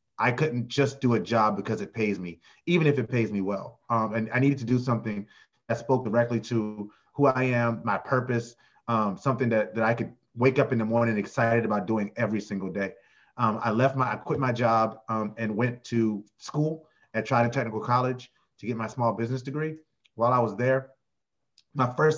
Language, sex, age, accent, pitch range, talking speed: English, male, 30-49, American, 110-130 Hz, 210 wpm